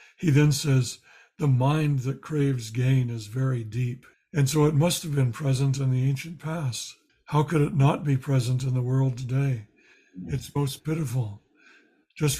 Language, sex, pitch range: English, male, 130-150 Hz